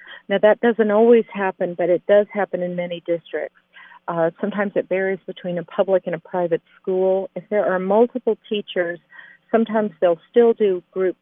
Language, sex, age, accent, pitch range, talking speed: English, female, 50-69, American, 170-195 Hz, 175 wpm